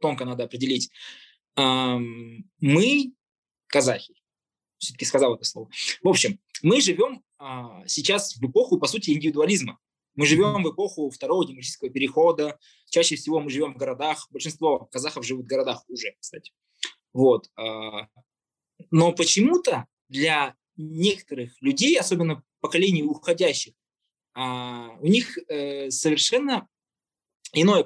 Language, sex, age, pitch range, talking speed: Russian, male, 20-39, 140-190 Hz, 110 wpm